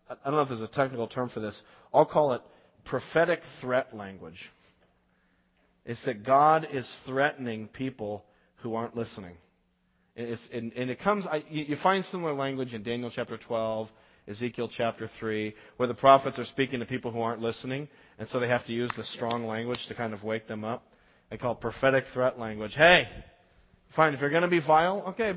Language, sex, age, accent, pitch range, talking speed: English, male, 40-59, American, 115-150 Hz, 190 wpm